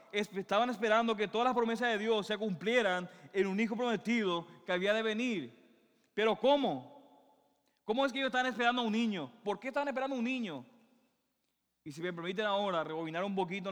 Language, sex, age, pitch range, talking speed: Spanish, male, 20-39, 180-230 Hz, 190 wpm